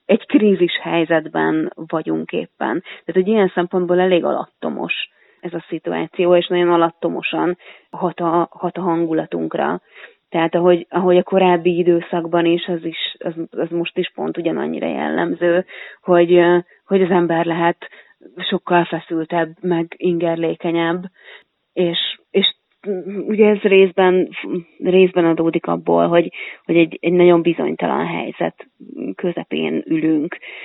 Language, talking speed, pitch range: Hungarian, 125 wpm, 165-185 Hz